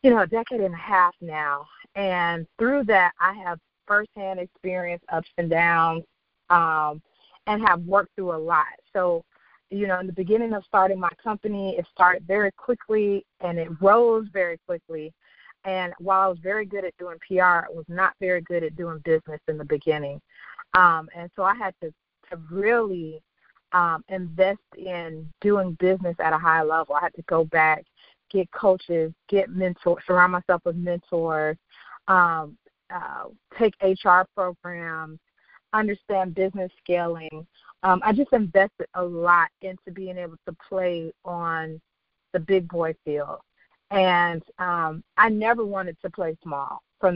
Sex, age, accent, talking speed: female, 40-59, American, 160 wpm